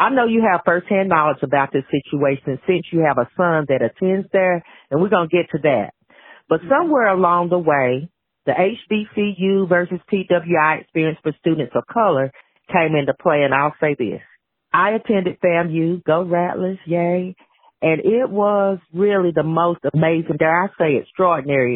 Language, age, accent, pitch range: English, 40-59, American, 150-185 Hz